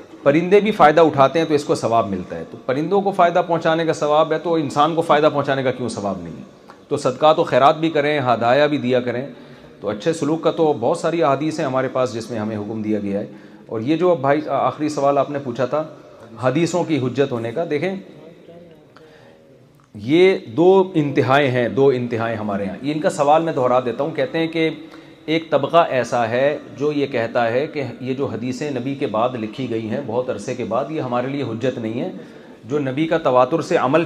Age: 40-59